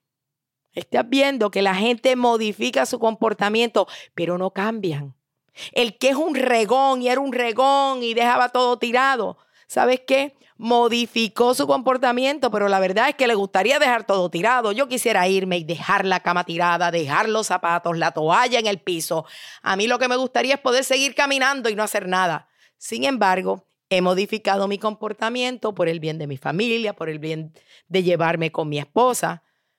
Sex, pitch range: female, 160-235 Hz